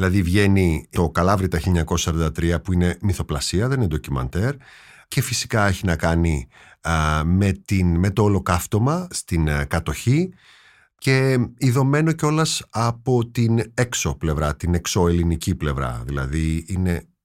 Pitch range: 85-110 Hz